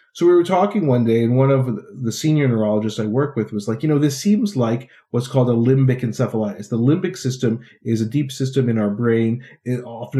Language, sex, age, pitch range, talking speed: English, male, 40-59, 115-145 Hz, 225 wpm